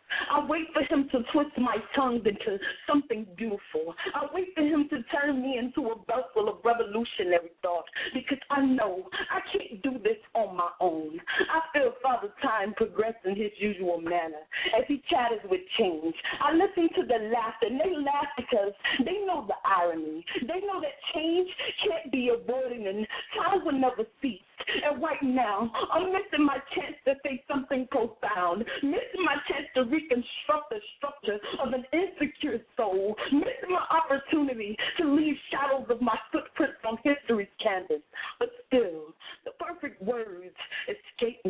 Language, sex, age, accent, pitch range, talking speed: English, female, 40-59, American, 225-325 Hz, 165 wpm